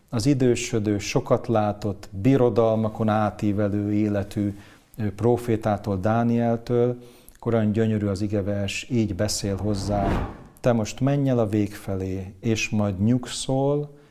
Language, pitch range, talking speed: Hungarian, 105-120 Hz, 110 wpm